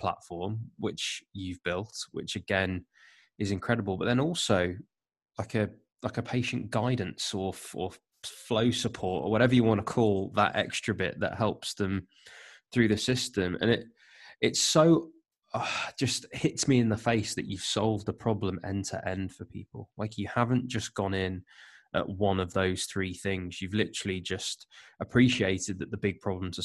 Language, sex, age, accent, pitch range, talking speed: English, male, 20-39, British, 95-110 Hz, 175 wpm